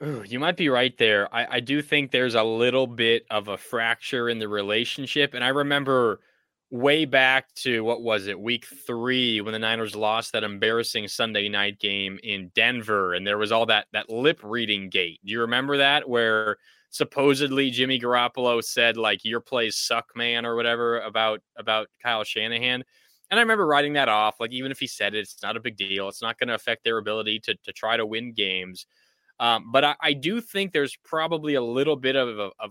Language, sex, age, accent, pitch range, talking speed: English, male, 20-39, American, 110-130 Hz, 205 wpm